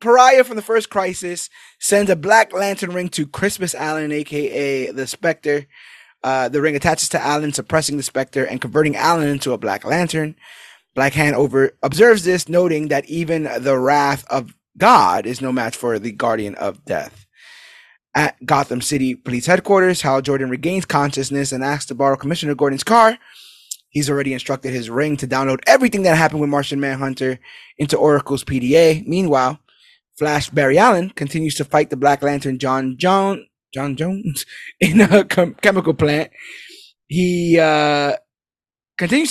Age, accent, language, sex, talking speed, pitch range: 20-39, American, English, male, 160 wpm, 140-180 Hz